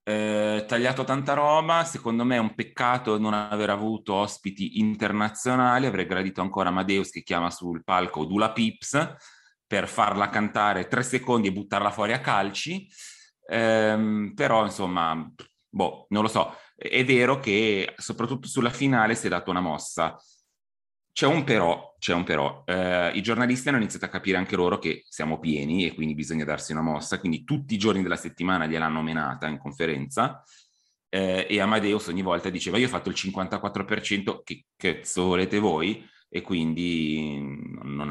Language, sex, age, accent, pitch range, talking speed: Italian, male, 30-49, native, 90-115 Hz, 165 wpm